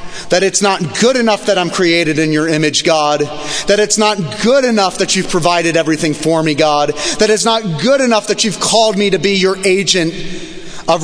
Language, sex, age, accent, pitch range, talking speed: English, male, 30-49, American, 125-170 Hz, 205 wpm